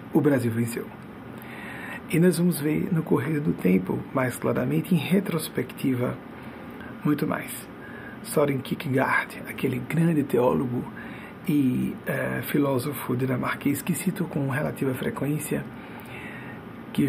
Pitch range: 130-185 Hz